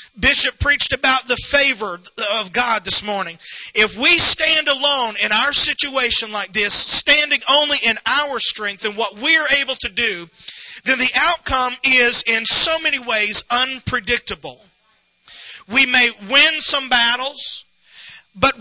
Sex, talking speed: male, 145 wpm